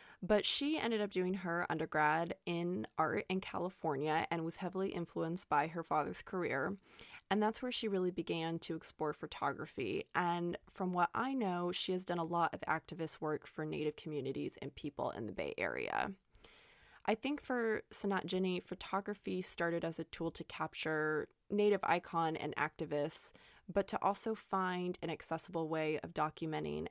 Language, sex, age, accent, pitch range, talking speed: English, female, 20-39, American, 160-185 Hz, 165 wpm